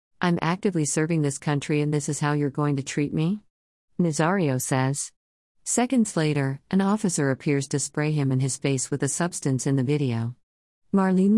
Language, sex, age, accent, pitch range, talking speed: English, female, 50-69, American, 130-165 Hz, 180 wpm